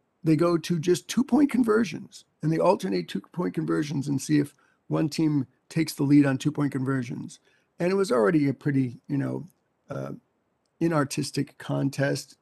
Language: English